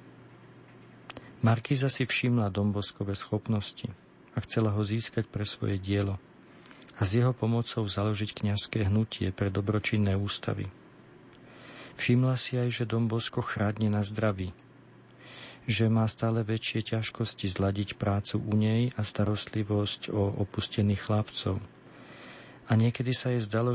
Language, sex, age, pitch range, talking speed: Slovak, male, 50-69, 100-115 Hz, 125 wpm